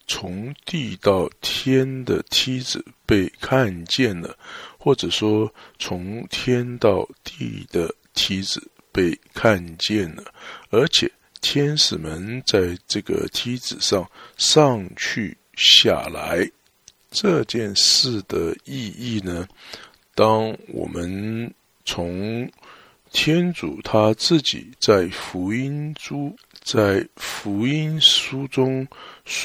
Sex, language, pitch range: male, English, 95-130 Hz